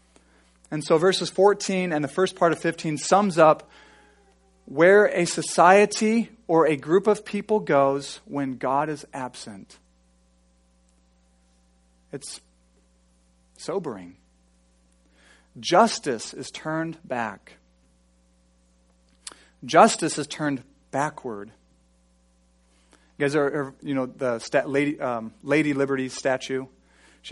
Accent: American